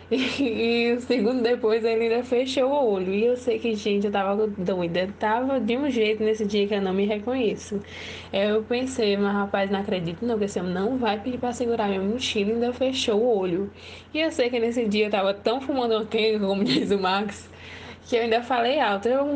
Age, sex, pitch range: 10-29, female, 205-245 Hz